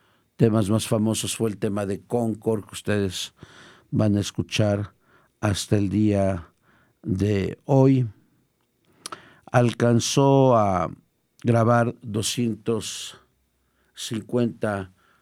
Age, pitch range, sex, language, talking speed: 50-69, 100-120 Hz, male, Spanish, 85 wpm